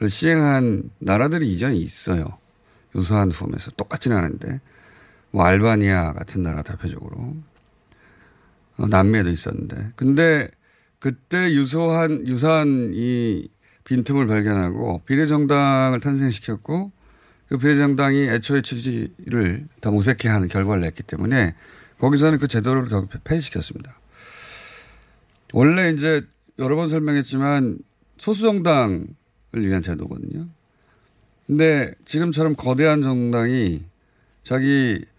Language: Korean